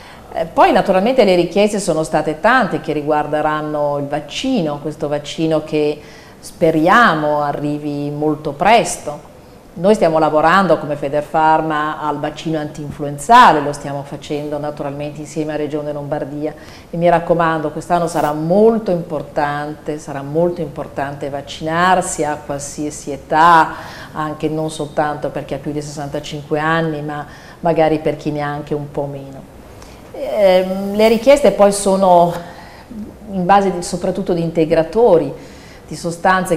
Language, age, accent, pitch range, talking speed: Italian, 40-59, native, 145-170 Hz, 130 wpm